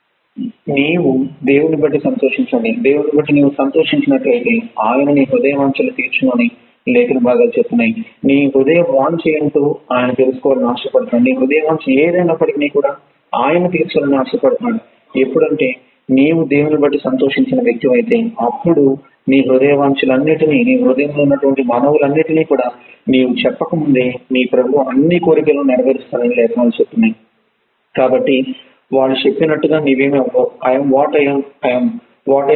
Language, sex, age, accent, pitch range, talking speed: Telugu, male, 30-49, native, 135-165 Hz, 130 wpm